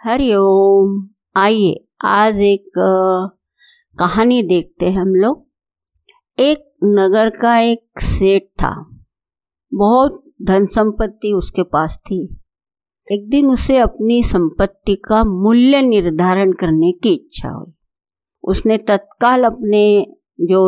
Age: 50-69